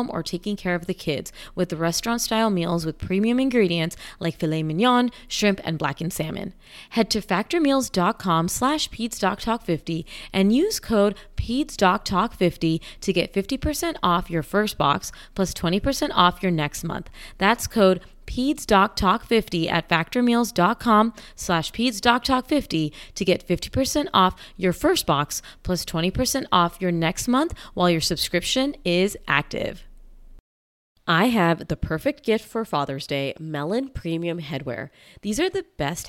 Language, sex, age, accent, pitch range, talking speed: English, female, 20-39, American, 160-230 Hz, 135 wpm